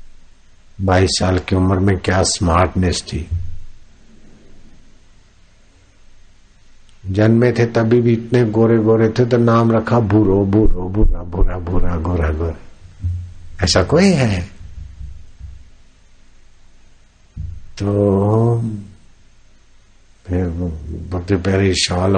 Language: Hindi